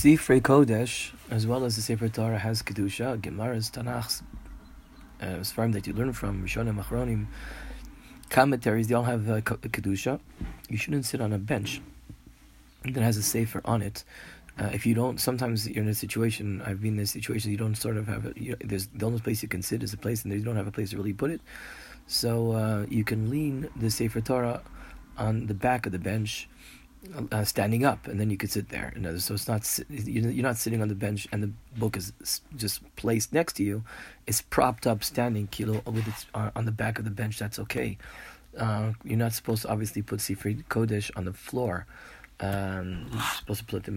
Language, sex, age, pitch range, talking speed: English, male, 30-49, 105-115 Hz, 220 wpm